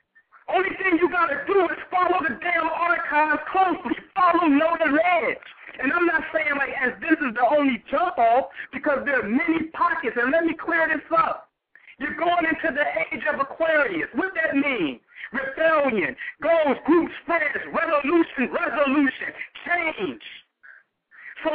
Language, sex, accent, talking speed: English, male, American, 150 wpm